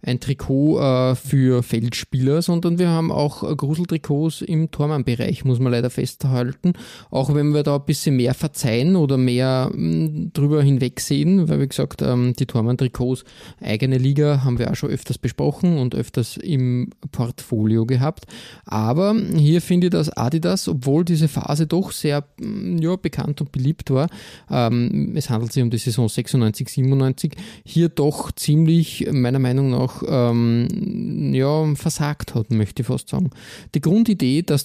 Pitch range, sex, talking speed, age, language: 125-155 Hz, male, 150 wpm, 20-39, German